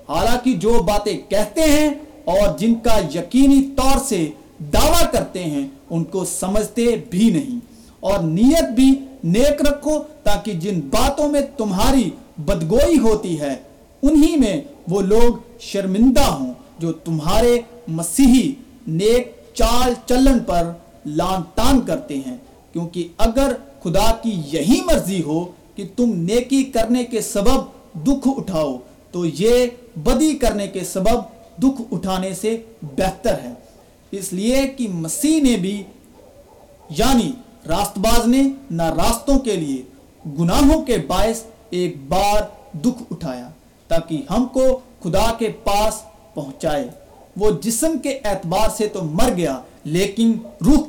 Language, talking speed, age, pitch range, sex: Urdu, 130 wpm, 50-69, 180-255 Hz, male